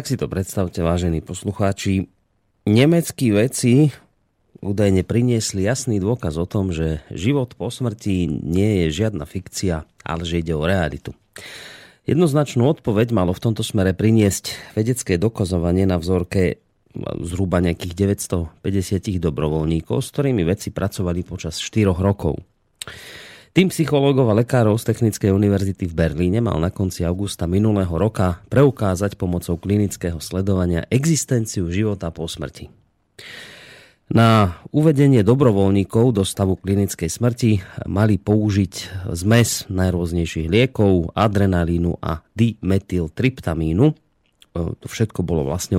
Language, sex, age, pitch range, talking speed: Slovak, male, 30-49, 90-115 Hz, 120 wpm